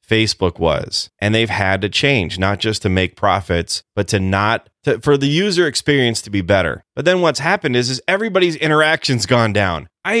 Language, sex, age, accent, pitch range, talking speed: English, male, 30-49, American, 105-145 Hz, 200 wpm